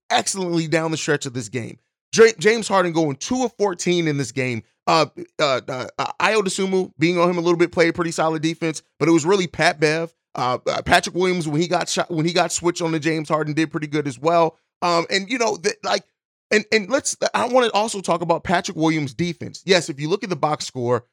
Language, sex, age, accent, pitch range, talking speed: English, male, 30-49, American, 155-195 Hz, 245 wpm